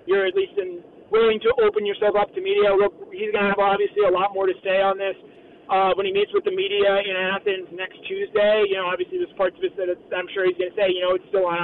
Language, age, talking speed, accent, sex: English, 30-49, 270 wpm, American, male